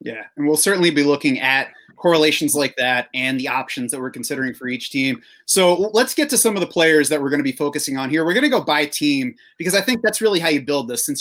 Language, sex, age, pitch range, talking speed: English, male, 30-49, 140-185 Hz, 275 wpm